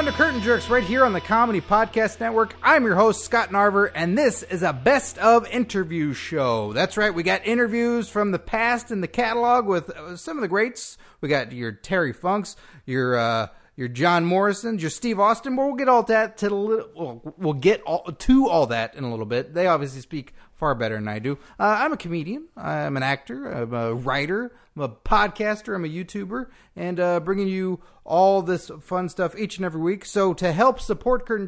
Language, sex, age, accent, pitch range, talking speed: English, male, 30-49, American, 165-230 Hz, 210 wpm